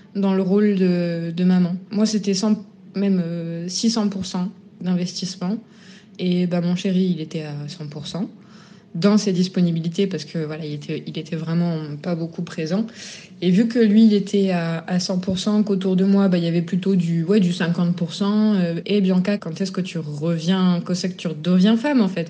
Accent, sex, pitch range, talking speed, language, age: French, female, 175-205 Hz, 195 wpm, French, 20-39